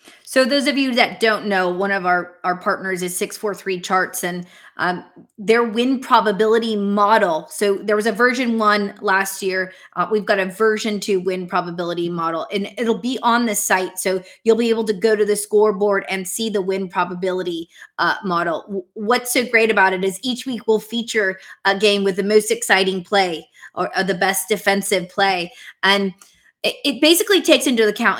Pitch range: 190-225 Hz